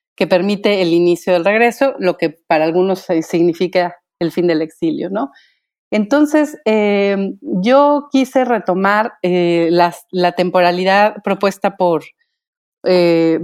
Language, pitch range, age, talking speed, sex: Spanish, 175-215 Hz, 30-49, 120 wpm, female